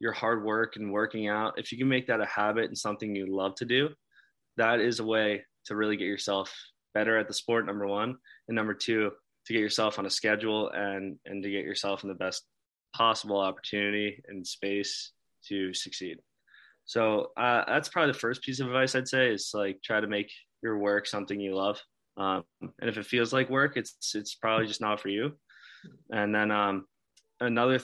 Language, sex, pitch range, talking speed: English, male, 100-115 Hz, 205 wpm